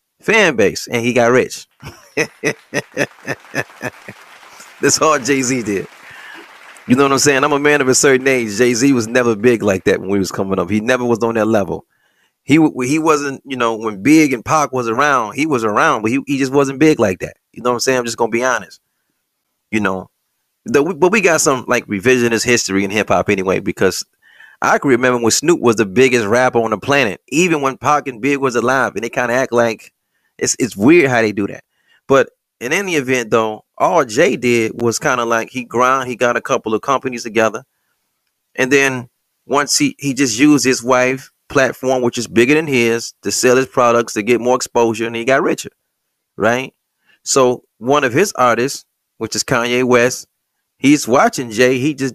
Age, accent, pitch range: 30-49, American, 115-135 Hz